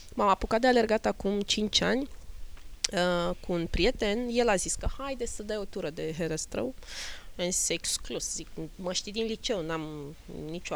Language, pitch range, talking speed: Romanian, 175-255 Hz, 175 wpm